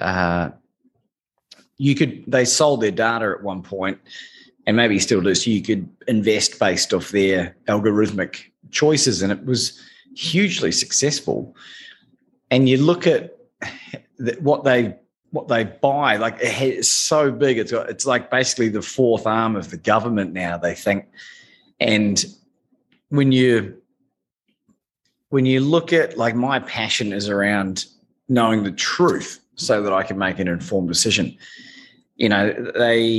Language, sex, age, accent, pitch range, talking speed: English, male, 30-49, Australian, 100-130 Hz, 140 wpm